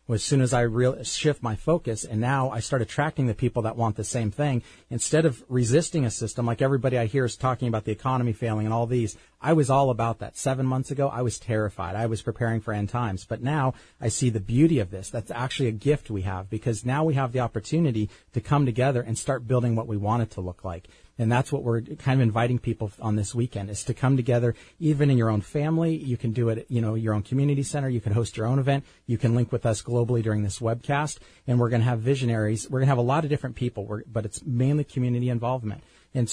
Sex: male